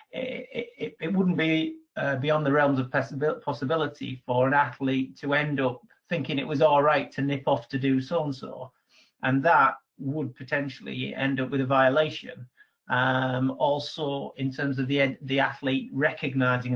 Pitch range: 130-145 Hz